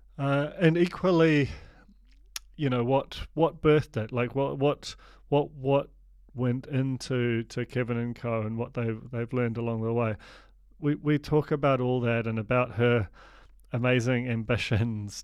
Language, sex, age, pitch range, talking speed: English, male, 30-49, 110-130 Hz, 155 wpm